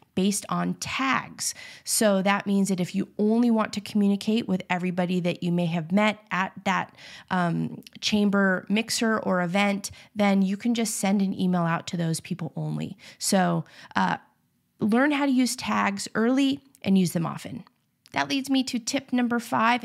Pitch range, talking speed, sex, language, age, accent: 185-230 Hz, 175 wpm, female, English, 30-49, American